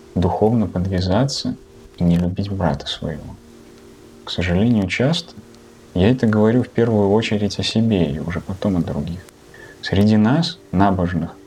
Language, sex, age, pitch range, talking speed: Russian, male, 20-39, 90-115 Hz, 135 wpm